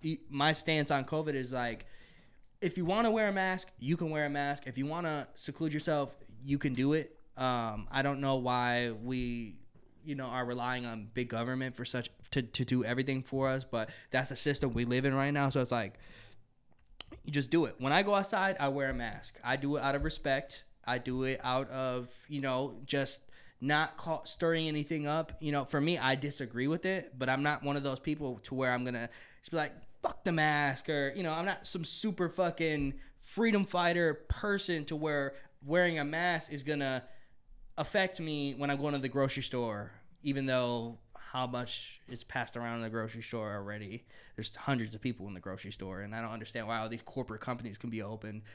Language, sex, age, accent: English, male, 20-39, American